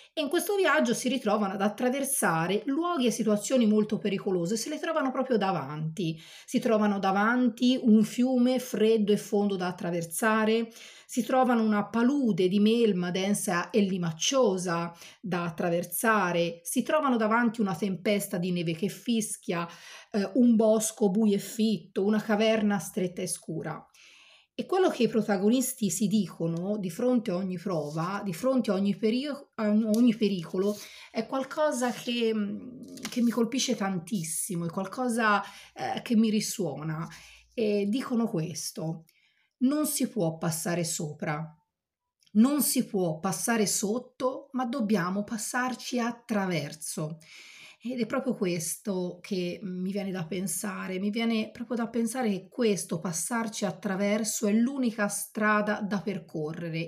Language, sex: Italian, female